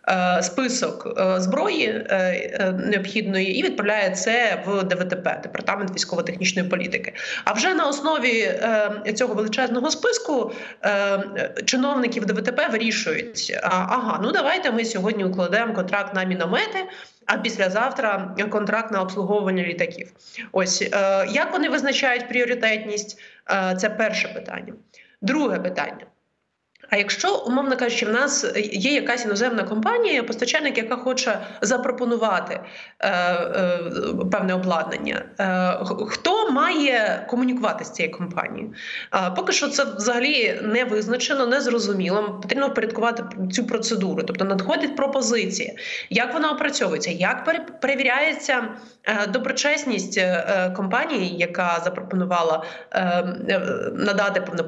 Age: 20-39